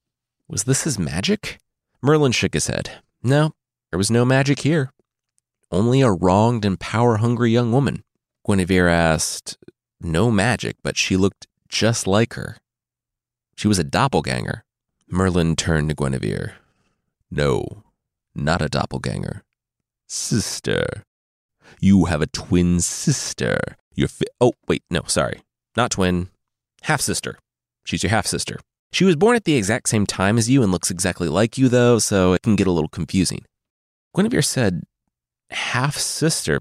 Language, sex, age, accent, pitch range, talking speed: English, male, 30-49, American, 95-135 Hz, 145 wpm